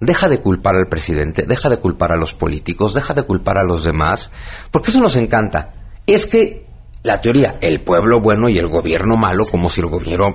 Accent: Mexican